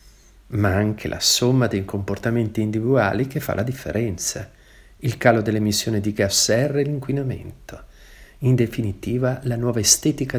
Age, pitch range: 50-69, 110-170 Hz